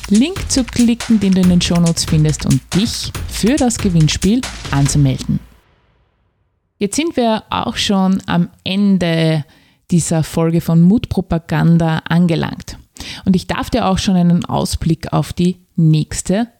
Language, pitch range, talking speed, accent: German, 155-205 Hz, 135 wpm, Austrian